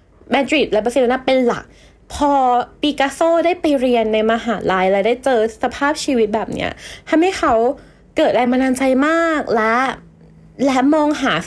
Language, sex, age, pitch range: Thai, female, 20-39, 230-310 Hz